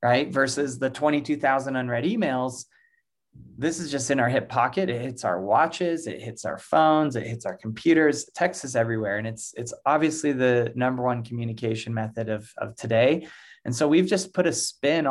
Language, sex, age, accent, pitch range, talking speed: English, male, 20-39, American, 120-145 Hz, 185 wpm